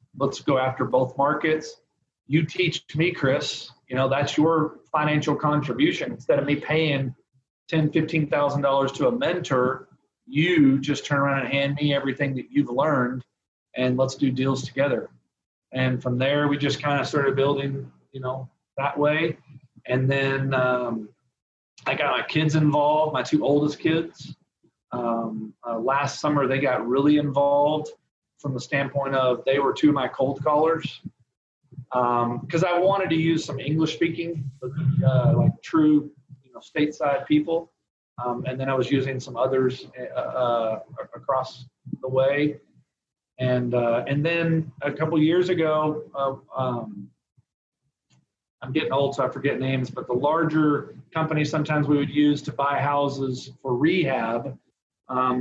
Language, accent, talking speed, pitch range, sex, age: English, American, 155 wpm, 130-150 Hz, male, 40-59